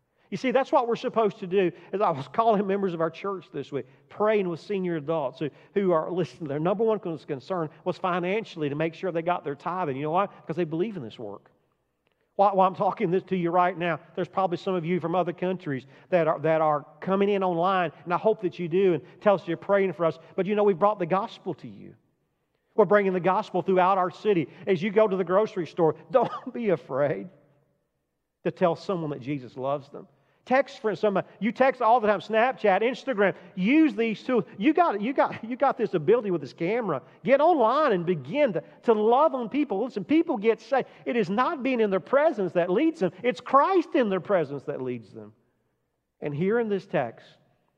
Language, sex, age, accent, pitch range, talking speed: English, male, 40-59, American, 160-220 Hz, 225 wpm